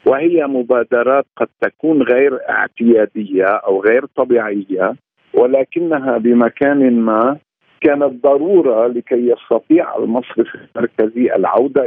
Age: 50-69